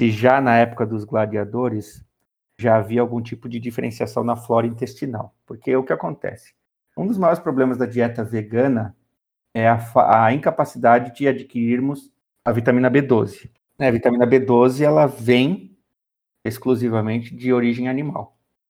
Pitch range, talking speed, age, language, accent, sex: 115-130 Hz, 145 wpm, 50-69, Portuguese, Brazilian, male